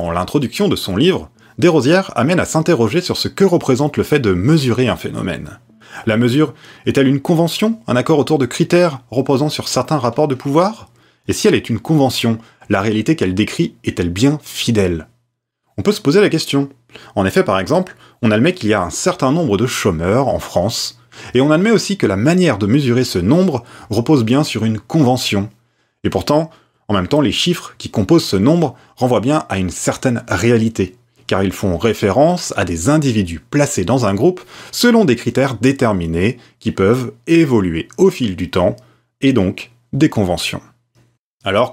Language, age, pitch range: French, 30-49, 110-155 Hz